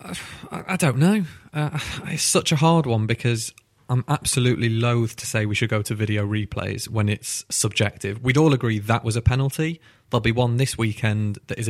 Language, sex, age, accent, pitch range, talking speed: English, male, 30-49, British, 110-135 Hz, 195 wpm